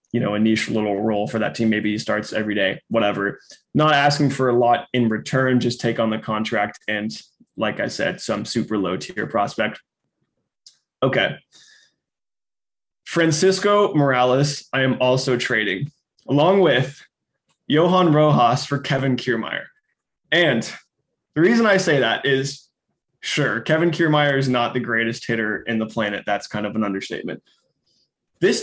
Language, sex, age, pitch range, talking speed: English, male, 20-39, 115-150 Hz, 155 wpm